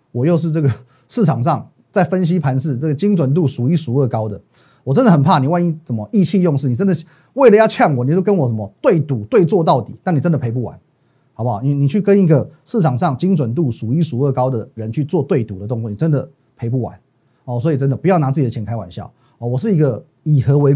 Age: 30-49